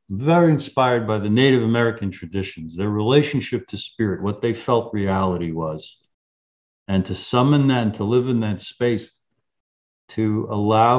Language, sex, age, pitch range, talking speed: English, male, 50-69, 100-125 Hz, 155 wpm